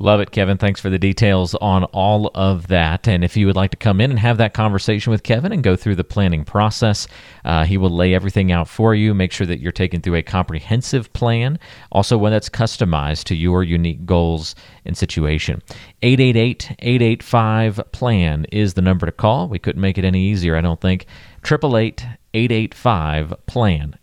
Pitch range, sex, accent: 90-110 Hz, male, American